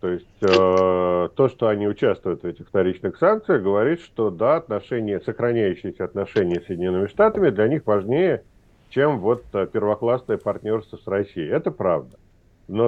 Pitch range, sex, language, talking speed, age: 105-125 Hz, male, Russian, 145 wpm, 50-69